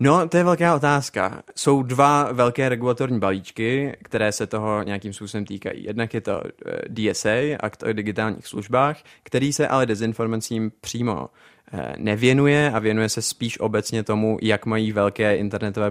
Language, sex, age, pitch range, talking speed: Czech, male, 20-39, 105-125 Hz, 150 wpm